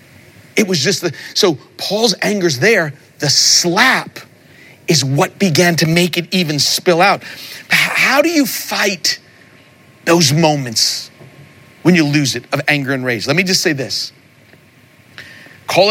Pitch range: 130-185 Hz